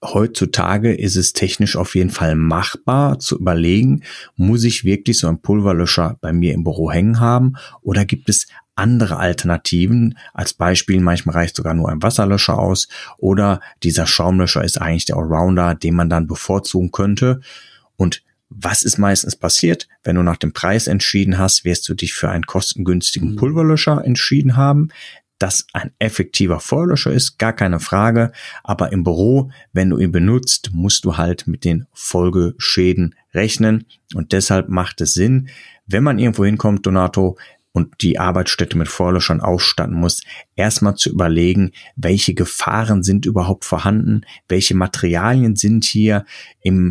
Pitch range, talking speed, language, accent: 85-105 Hz, 155 wpm, German, German